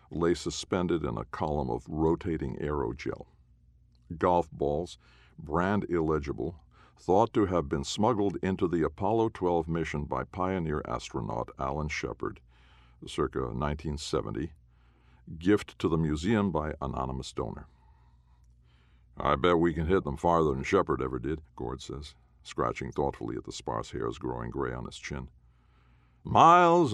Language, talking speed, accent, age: English, 135 wpm, American, 60-79